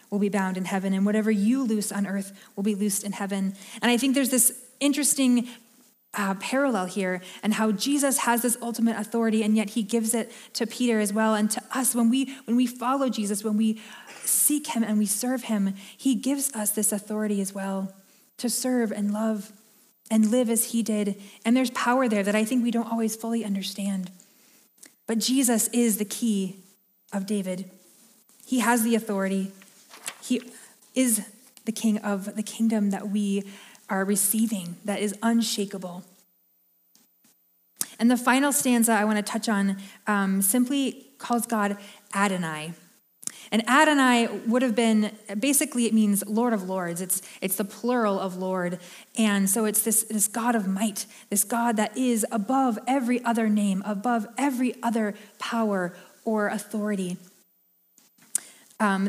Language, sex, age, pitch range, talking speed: English, female, 20-39, 200-240 Hz, 170 wpm